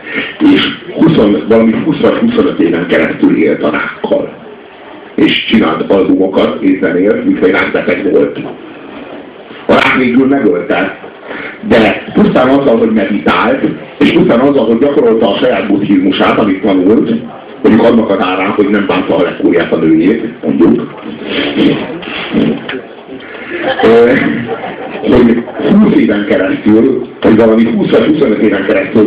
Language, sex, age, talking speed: Hungarian, male, 60-79, 125 wpm